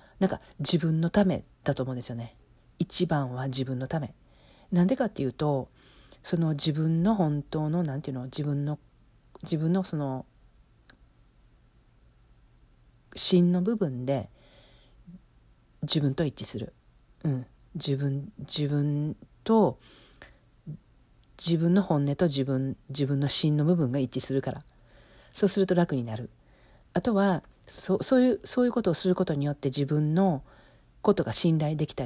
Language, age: Japanese, 40-59